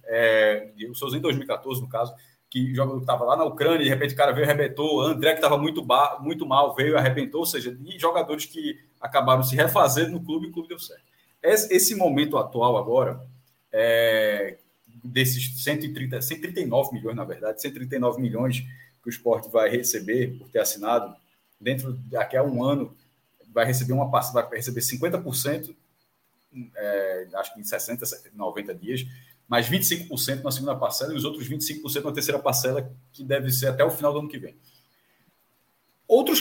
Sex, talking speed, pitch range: male, 180 wpm, 130-160 Hz